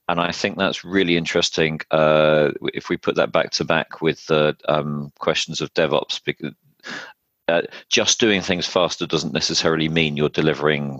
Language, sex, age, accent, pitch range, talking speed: English, male, 40-59, British, 75-85 Hz, 170 wpm